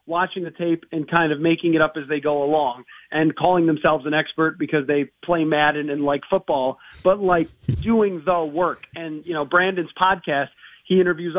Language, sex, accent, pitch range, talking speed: English, male, American, 155-185 Hz, 195 wpm